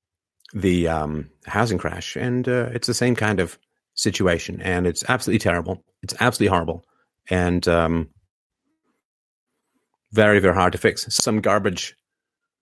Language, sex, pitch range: English, male, 85-105 Hz